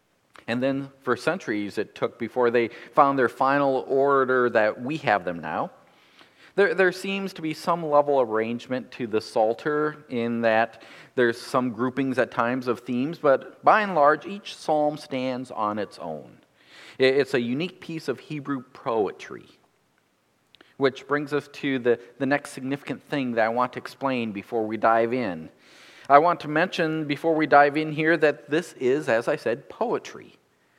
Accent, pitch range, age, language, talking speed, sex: American, 125-170 Hz, 40-59, English, 175 wpm, male